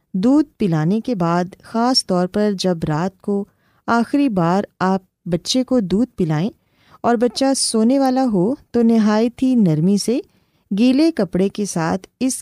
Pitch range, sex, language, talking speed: 175-255 Hz, female, Urdu, 155 wpm